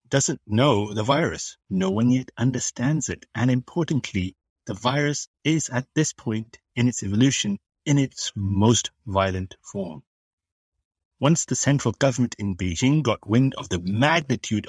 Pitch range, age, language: 95-125 Hz, 60-79, English